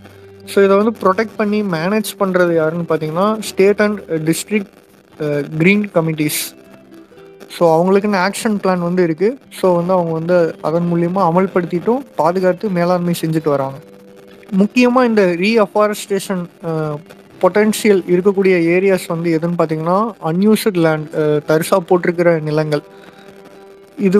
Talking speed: 110 wpm